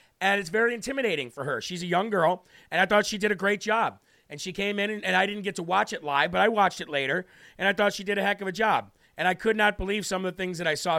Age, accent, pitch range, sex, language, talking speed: 40-59, American, 170-200 Hz, male, English, 315 wpm